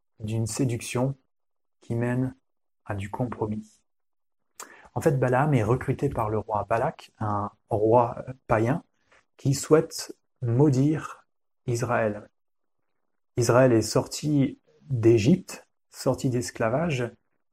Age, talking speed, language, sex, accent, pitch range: 30-49, 100 wpm, French, male, French, 110-140 Hz